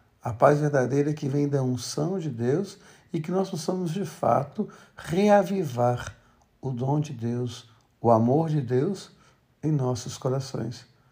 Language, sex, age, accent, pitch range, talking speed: Portuguese, male, 60-79, Brazilian, 115-145 Hz, 145 wpm